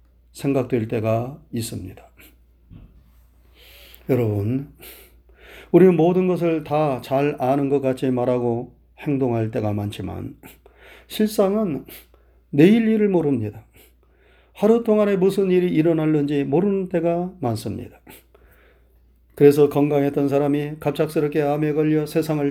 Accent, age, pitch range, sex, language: native, 40-59, 110-160 Hz, male, Korean